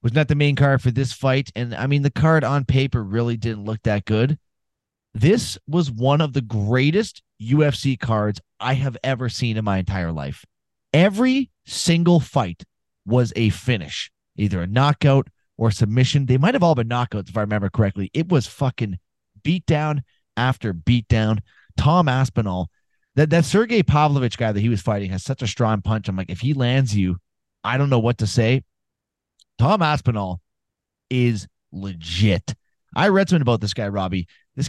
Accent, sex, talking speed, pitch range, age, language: American, male, 180 wpm, 105-145 Hz, 30-49, English